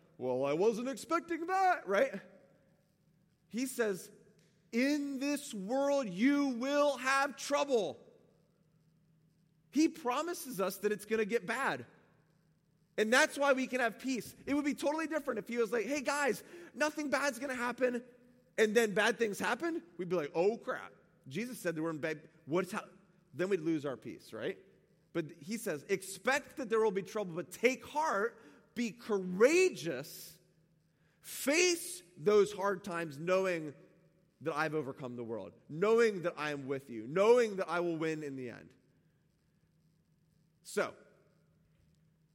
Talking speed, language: 155 wpm, English